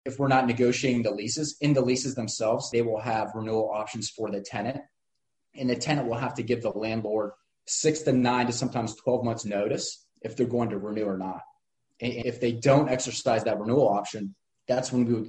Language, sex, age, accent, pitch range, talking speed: English, male, 30-49, American, 105-120 Hz, 210 wpm